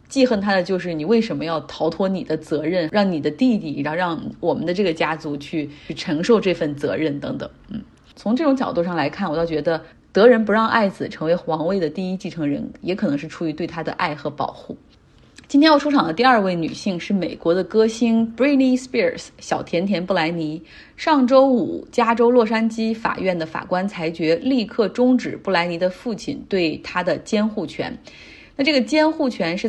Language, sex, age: Chinese, female, 30-49